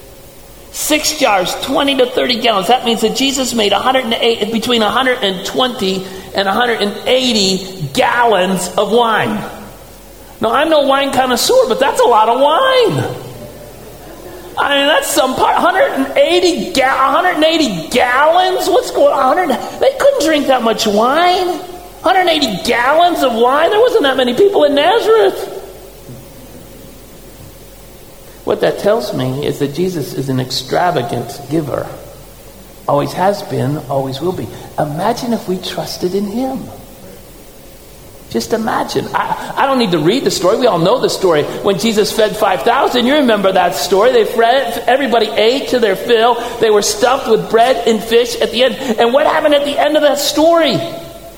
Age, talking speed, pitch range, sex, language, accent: 40-59, 150 wpm, 205-295 Hz, male, English, American